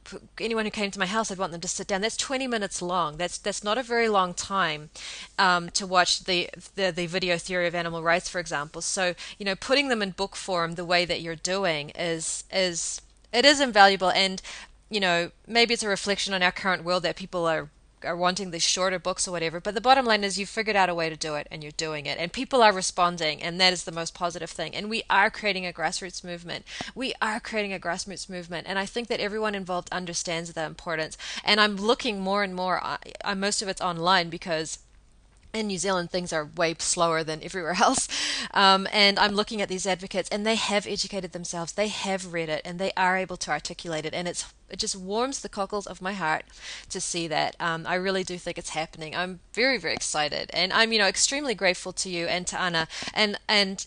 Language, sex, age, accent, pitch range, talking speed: English, female, 20-39, Australian, 170-200 Hz, 230 wpm